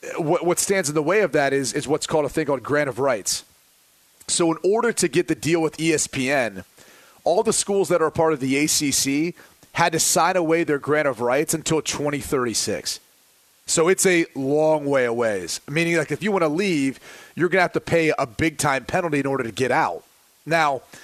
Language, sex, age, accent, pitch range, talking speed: English, male, 30-49, American, 145-175 Hz, 210 wpm